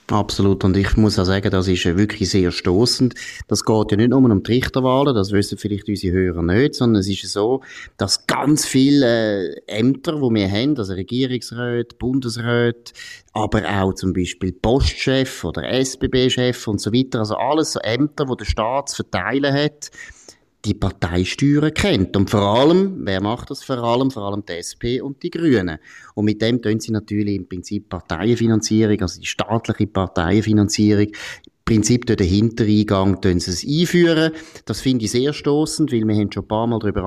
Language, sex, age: German, male, 30-49